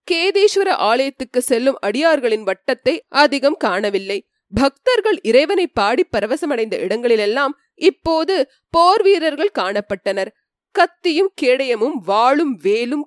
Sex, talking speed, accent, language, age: female, 85 wpm, native, Tamil, 20-39